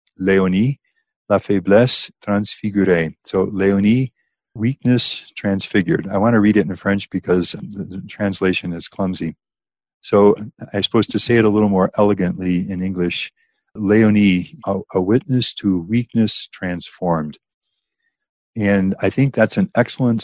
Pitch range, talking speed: 90-110 Hz, 130 wpm